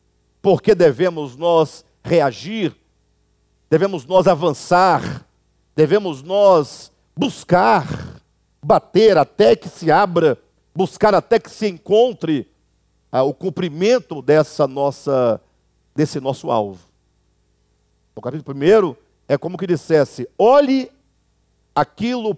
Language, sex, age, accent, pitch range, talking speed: Portuguese, male, 50-69, Brazilian, 130-190 Hz, 100 wpm